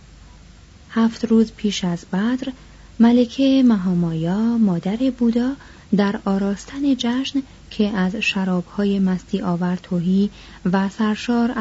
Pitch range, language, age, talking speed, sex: 175-230 Hz, Persian, 30-49, 105 wpm, female